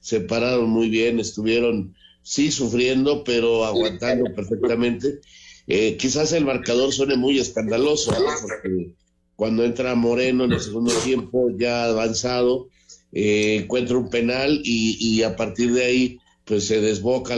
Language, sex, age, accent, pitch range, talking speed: Spanish, male, 50-69, Mexican, 110-125 Hz, 140 wpm